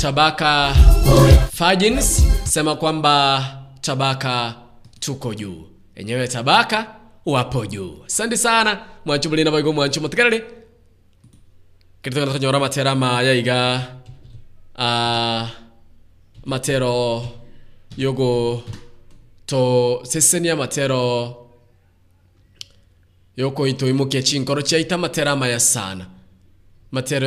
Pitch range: 100-140 Hz